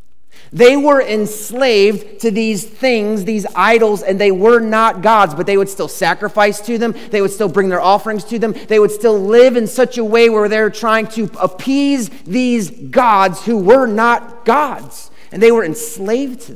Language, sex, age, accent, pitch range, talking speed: English, male, 30-49, American, 170-230 Hz, 190 wpm